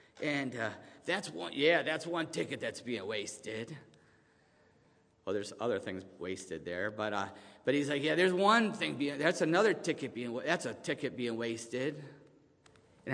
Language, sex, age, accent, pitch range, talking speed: English, male, 50-69, American, 110-150 Hz, 170 wpm